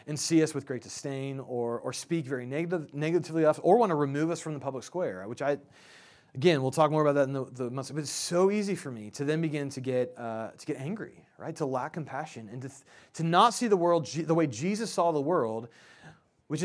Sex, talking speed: male, 250 wpm